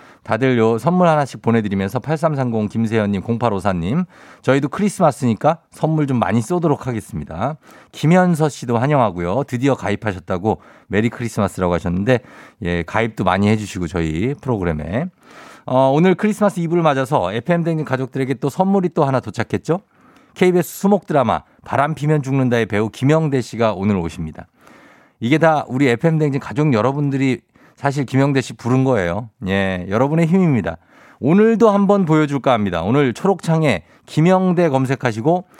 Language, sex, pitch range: Korean, male, 115-160 Hz